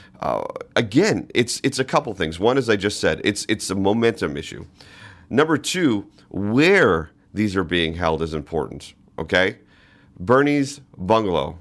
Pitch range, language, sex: 90-110 Hz, English, male